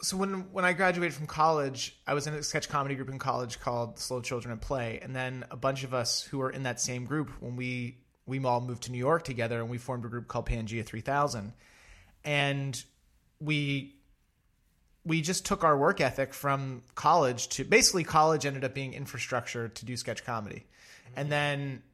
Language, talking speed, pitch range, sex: English, 200 wpm, 125-155 Hz, male